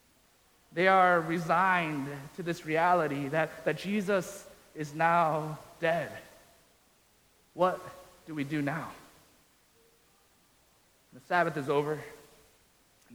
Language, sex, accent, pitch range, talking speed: English, male, American, 170-245 Hz, 100 wpm